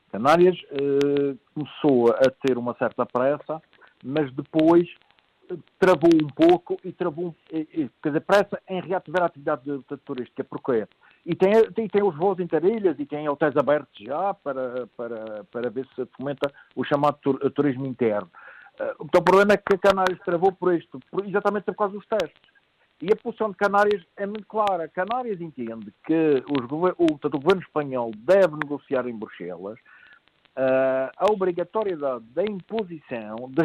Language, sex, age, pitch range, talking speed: Portuguese, male, 50-69, 145-210 Hz, 175 wpm